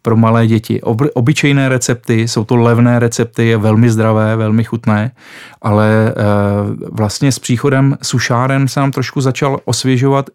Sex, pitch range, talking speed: male, 110-125 Hz, 145 wpm